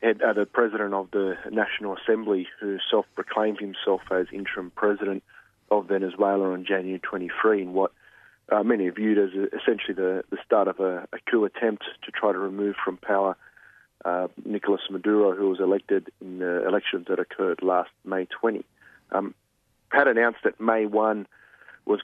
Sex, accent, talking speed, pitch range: male, Australian, 165 wpm, 95-110 Hz